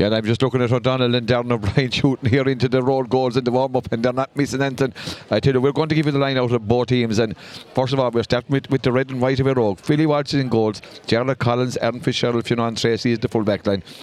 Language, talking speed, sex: English, 300 wpm, male